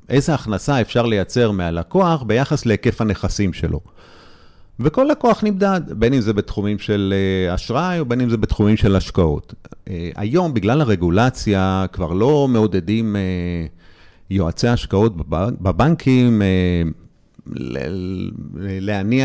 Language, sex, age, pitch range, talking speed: Hebrew, male, 40-59, 95-135 Hz, 105 wpm